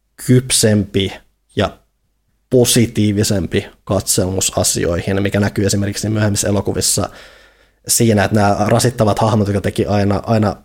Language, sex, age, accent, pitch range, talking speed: Finnish, male, 20-39, native, 100-120 Hz, 105 wpm